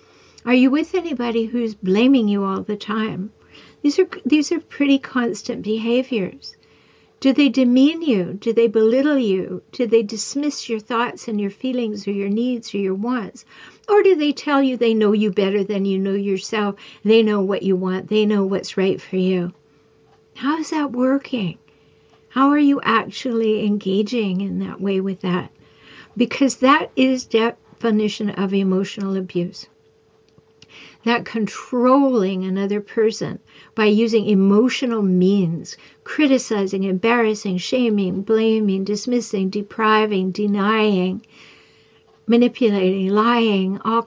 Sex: female